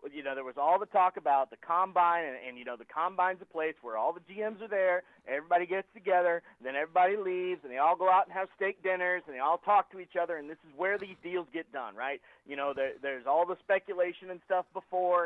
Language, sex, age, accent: English, male, 40-59, American